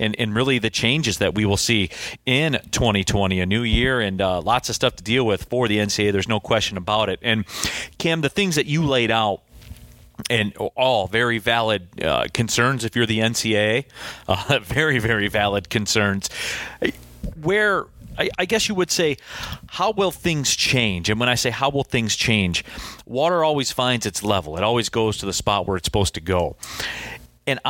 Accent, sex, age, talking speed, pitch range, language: American, male, 40-59, 195 wpm, 100-125 Hz, English